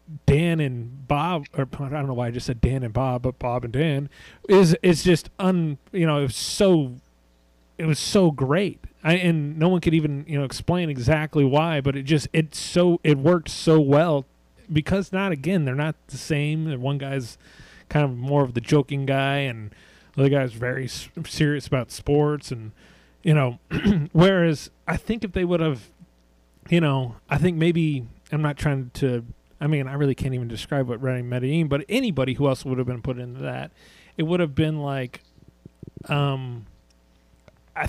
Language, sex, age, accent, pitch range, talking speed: English, male, 30-49, American, 125-155 Hz, 195 wpm